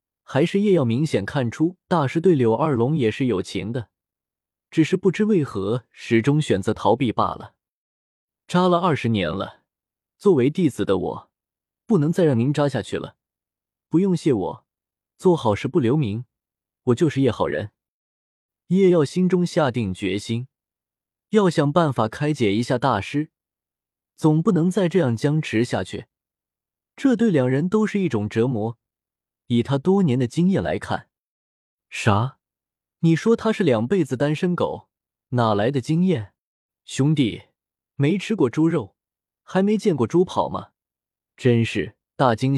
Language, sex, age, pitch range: Chinese, male, 20-39, 115-175 Hz